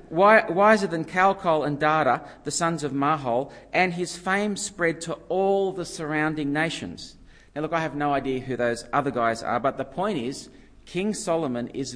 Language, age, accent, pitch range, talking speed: English, 40-59, Australian, 130-180 Hz, 180 wpm